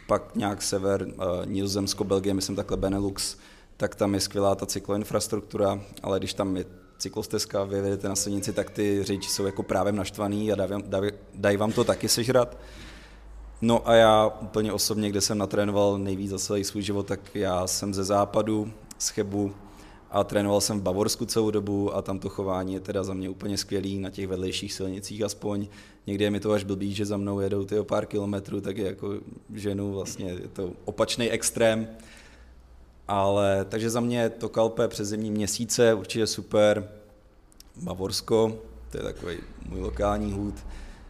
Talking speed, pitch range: 170 wpm, 100-110 Hz